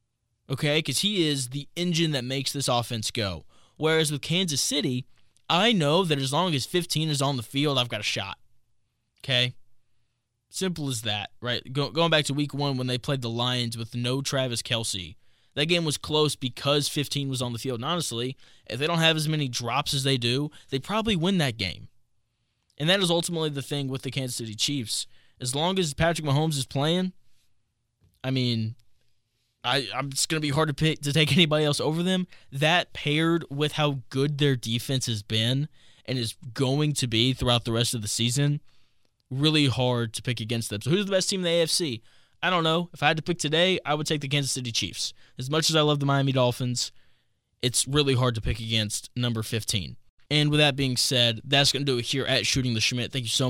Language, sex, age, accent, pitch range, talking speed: English, male, 20-39, American, 115-150 Hz, 215 wpm